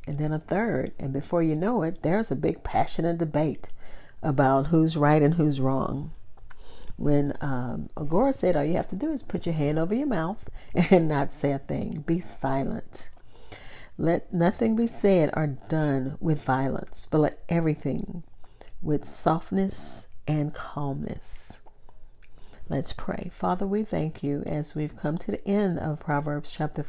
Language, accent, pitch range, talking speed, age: English, American, 140-170 Hz, 165 wpm, 50-69